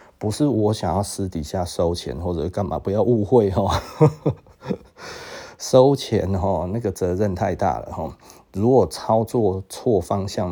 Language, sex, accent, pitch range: Chinese, male, native, 90-115 Hz